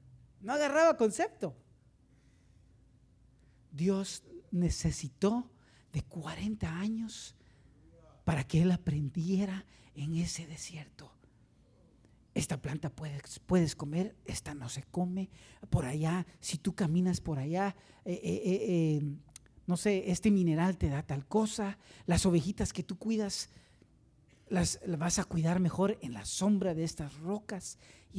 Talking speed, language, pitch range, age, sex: 130 wpm, Spanish, 120-190 Hz, 40-59, male